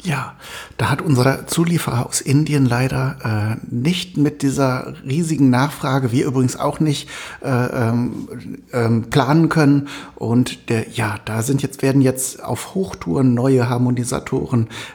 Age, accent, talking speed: 60-79, German, 135 wpm